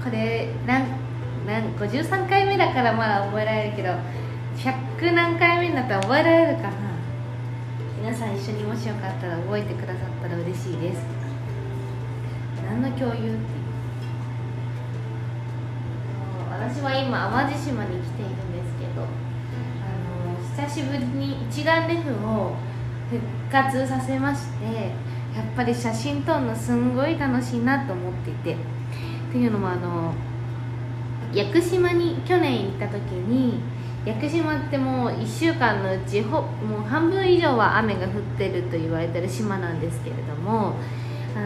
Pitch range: 115-125 Hz